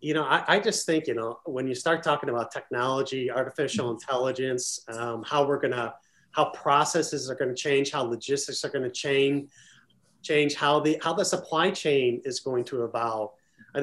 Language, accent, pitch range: English, American, 135-160 Hz